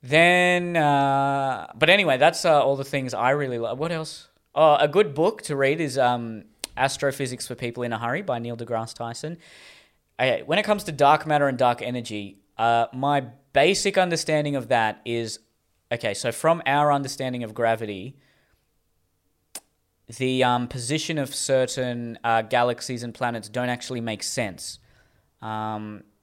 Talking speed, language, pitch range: 160 wpm, English, 115-135 Hz